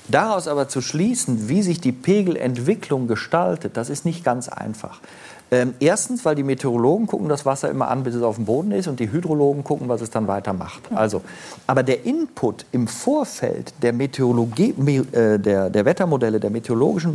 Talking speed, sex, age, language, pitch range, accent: 180 wpm, male, 50-69, German, 120-160 Hz, German